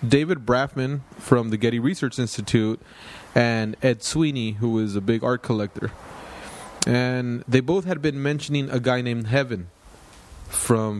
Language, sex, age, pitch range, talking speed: English, male, 20-39, 105-125 Hz, 145 wpm